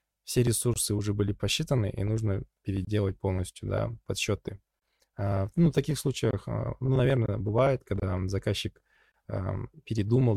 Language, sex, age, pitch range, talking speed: Russian, male, 20-39, 100-120 Hz, 120 wpm